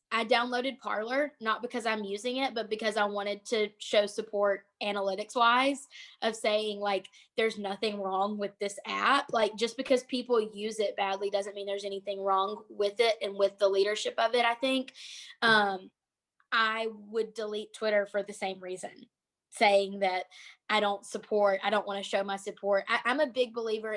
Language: English